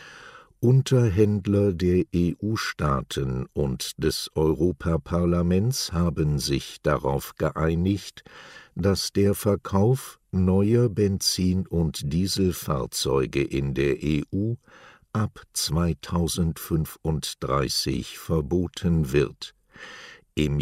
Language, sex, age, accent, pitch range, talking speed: German, male, 60-79, German, 75-100 Hz, 75 wpm